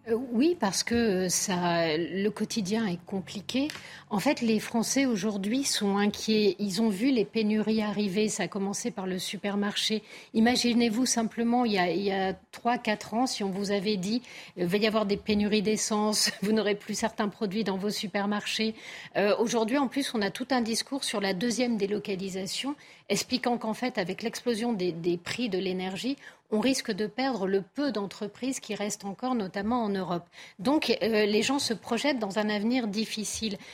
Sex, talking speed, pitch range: female, 180 wpm, 200-250 Hz